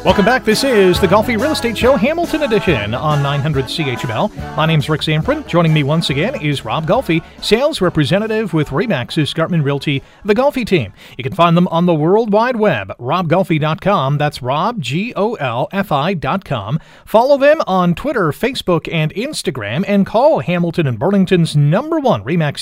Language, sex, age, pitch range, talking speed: English, male, 40-59, 145-195 Hz, 180 wpm